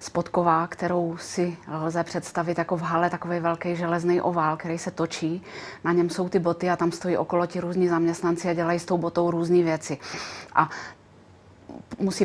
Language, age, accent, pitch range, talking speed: Czech, 30-49, native, 170-180 Hz, 175 wpm